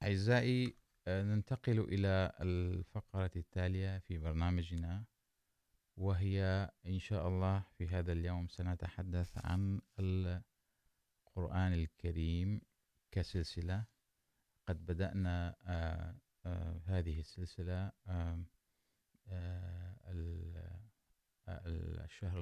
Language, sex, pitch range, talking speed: Urdu, male, 85-95 Hz, 65 wpm